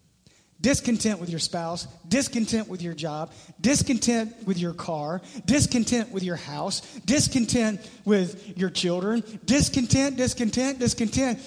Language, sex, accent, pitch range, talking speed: English, male, American, 190-250 Hz, 120 wpm